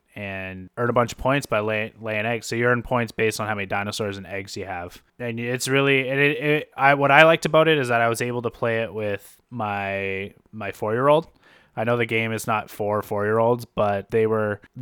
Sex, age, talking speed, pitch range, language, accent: male, 20-39, 235 wpm, 100-115 Hz, English, American